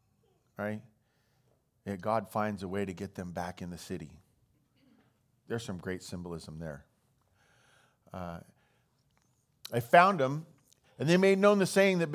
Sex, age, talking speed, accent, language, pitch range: male, 40-59, 150 wpm, American, English, 100-130 Hz